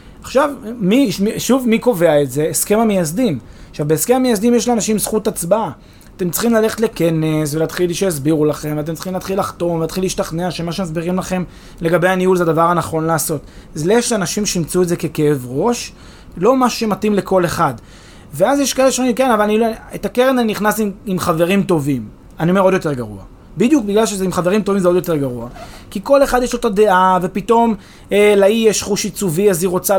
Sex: male